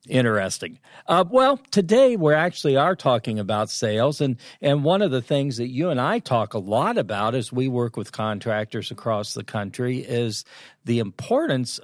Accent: American